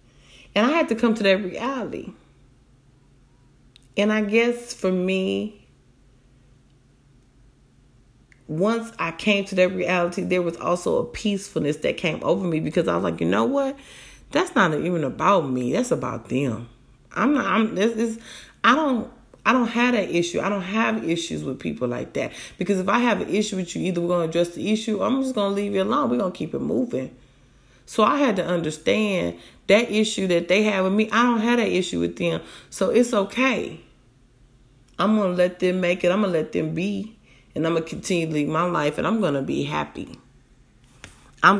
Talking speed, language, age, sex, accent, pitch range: 195 wpm, English, 30-49, female, American, 140-215 Hz